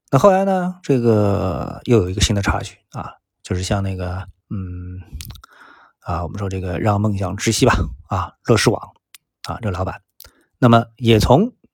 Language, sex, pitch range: Chinese, male, 95-125 Hz